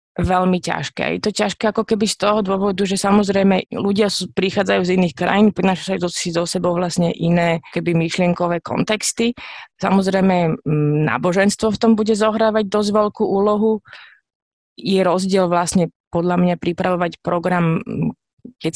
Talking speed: 135 wpm